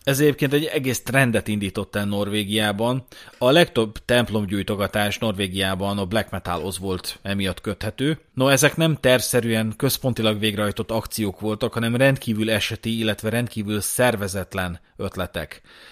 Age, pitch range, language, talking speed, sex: 30-49, 105-140 Hz, Hungarian, 125 wpm, male